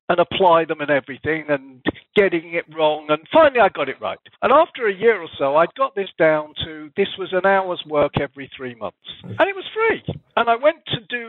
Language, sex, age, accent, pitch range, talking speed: English, male, 50-69, British, 140-170 Hz, 235 wpm